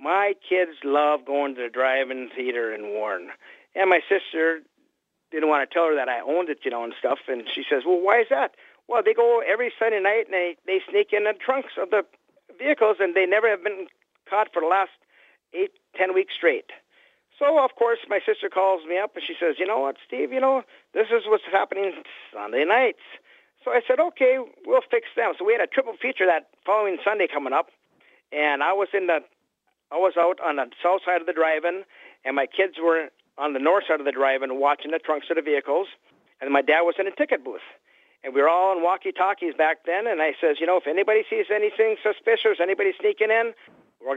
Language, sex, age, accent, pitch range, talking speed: English, male, 50-69, American, 155-235 Hz, 225 wpm